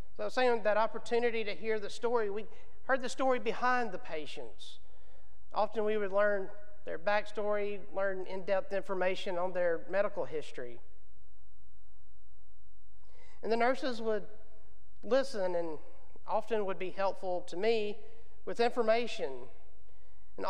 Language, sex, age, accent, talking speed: English, male, 40-59, American, 125 wpm